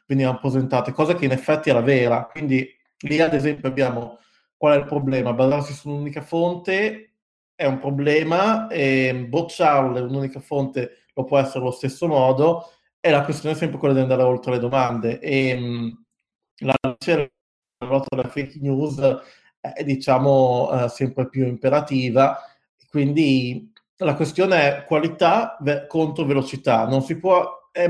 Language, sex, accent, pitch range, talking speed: Italian, male, native, 130-155 Hz, 145 wpm